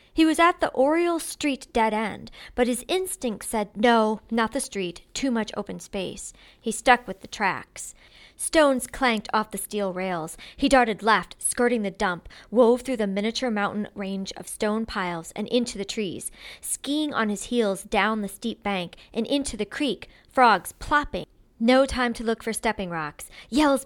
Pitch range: 205-255 Hz